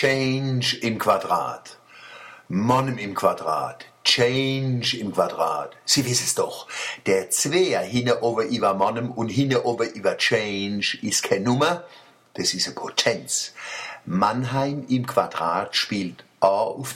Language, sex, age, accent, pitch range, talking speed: German, male, 60-79, German, 105-135 Hz, 125 wpm